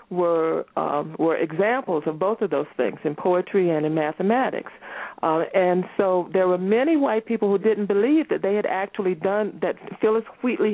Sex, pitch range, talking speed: female, 175-210 Hz, 185 wpm